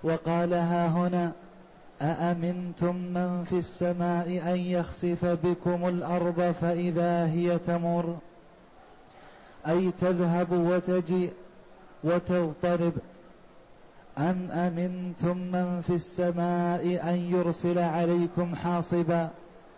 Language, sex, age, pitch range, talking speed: Arabic, male, 30-49, 170-180 Hz, 80 wpm